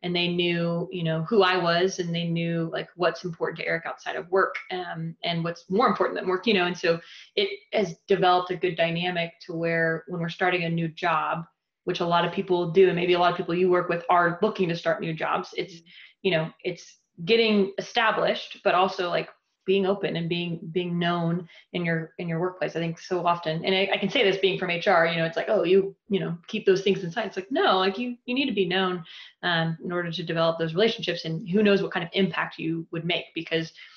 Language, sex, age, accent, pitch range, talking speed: English, female, 20-39, American, 170-195 Hz, 245 wpm